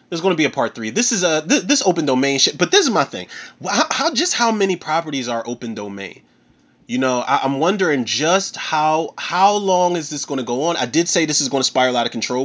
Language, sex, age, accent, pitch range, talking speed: English, male, 30-49, American, 115-185 Hz, 260 wpm